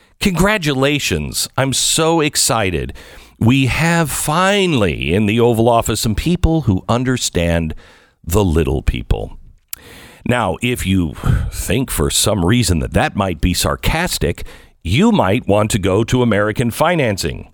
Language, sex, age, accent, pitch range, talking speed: English, male, 50-69, American, 90-145 Hz, 130 wpm